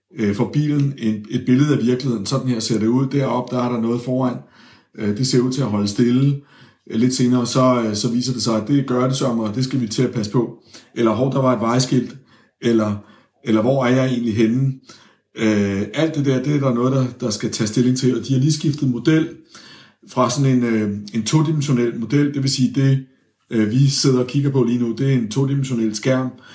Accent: native